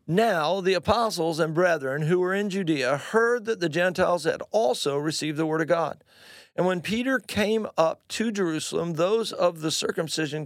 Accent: American